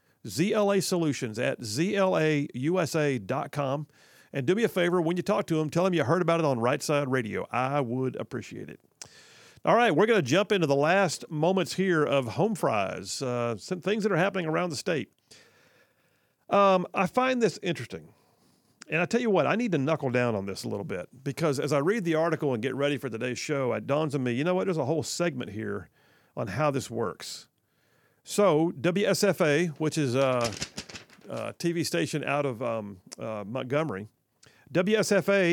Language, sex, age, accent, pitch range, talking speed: English, male, 50-69, American, 135-180 Hz, 190 wpm